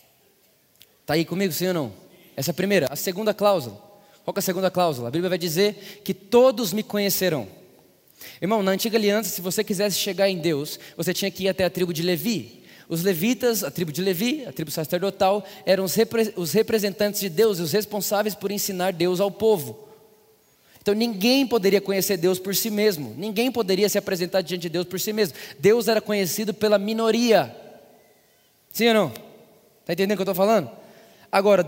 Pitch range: 185-230 Hz